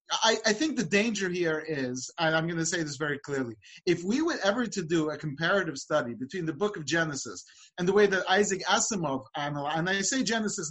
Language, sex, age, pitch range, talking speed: English, male, 30-49, 155-190 Hz, 225 wpm